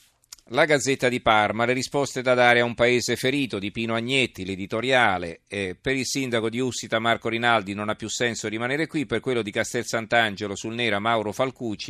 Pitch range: 100-115 Hz